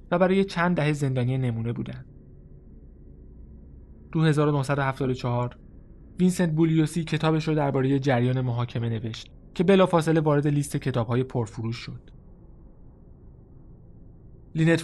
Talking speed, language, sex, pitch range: 95 wpm, Persian, male, 120-155 Hz